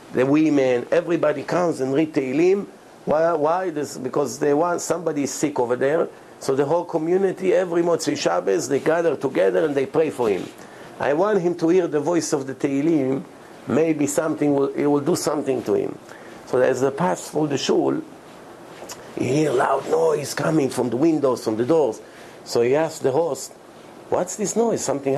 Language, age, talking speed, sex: English, 50-69, 190 wpm, male